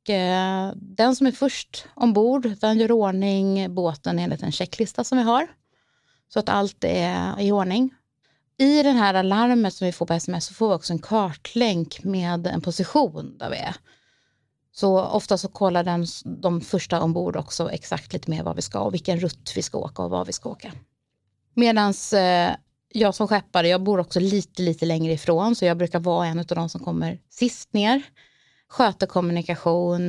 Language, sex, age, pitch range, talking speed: Swedish, female, 30-49, 175-220 Hz, 185 wpm